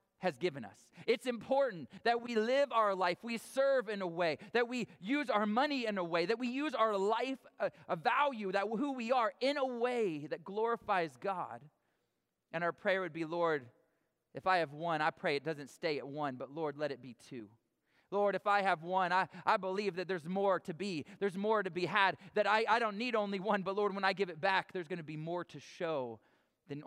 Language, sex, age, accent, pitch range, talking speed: English, male, 30-49, American, 175-235 Hz, 230 wpm